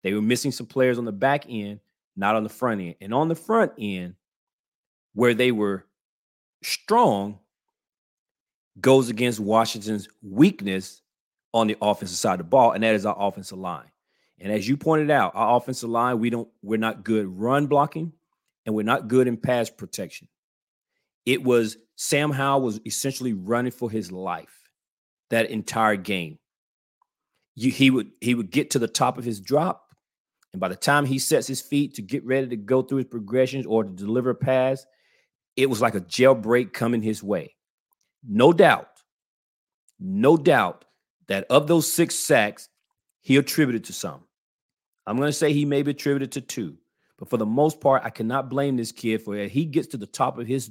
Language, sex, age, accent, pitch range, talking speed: English, male, 30-49, American, 110-135 Hz, 190 wpm